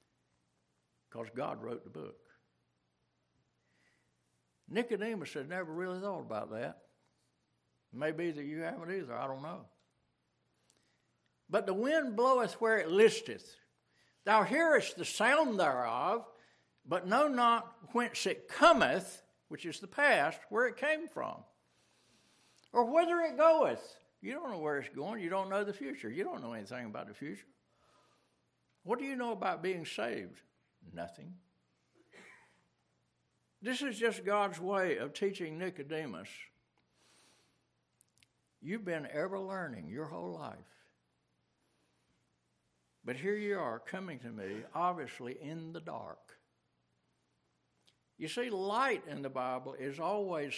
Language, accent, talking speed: English, American, 130 wpm